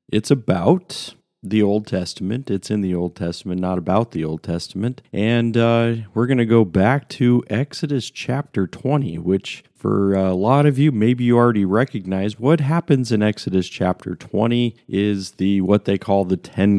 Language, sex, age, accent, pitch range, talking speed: English, male, 40-59, American, 95-130 Hz, 175 wpm